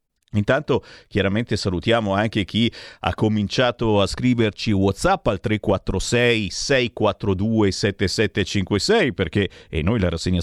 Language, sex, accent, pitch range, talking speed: Italian, male, native, 100-140 Hz, 110 wpm